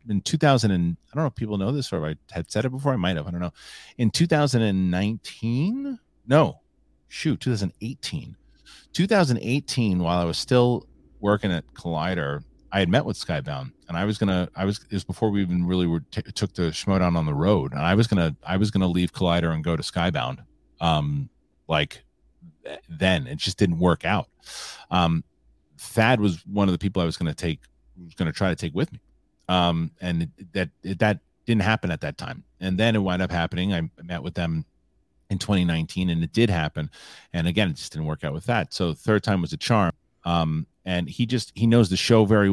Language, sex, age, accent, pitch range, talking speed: English, male, 30-49, American, 85-105 Hz, 220 wpm